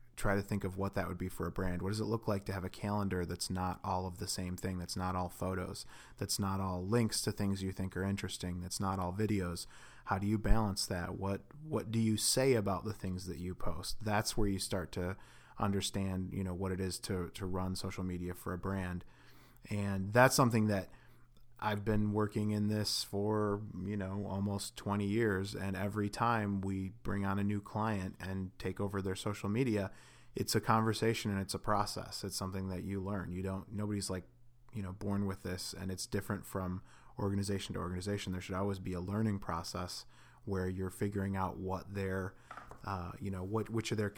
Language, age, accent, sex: English, 30-49, American, male